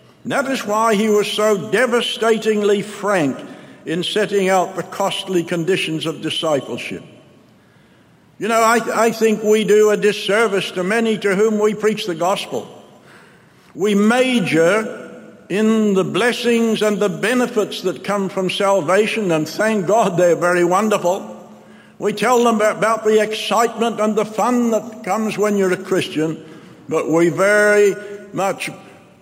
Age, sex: 60-79, male